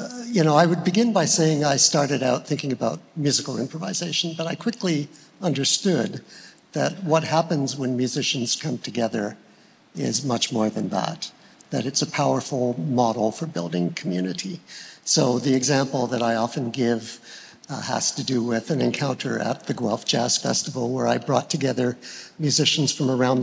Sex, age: male, 60-79